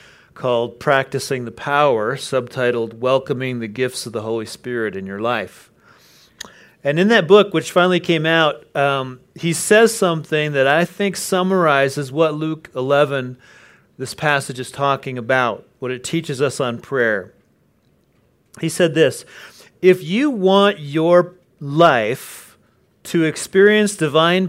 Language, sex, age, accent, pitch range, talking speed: English, male, 40-59, American, 135-185 Hz, 135 wpm